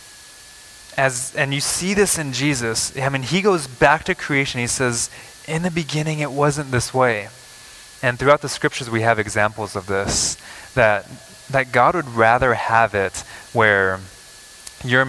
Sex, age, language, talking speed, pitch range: male, 20-39, English, 165 wpm, 110-145 Hz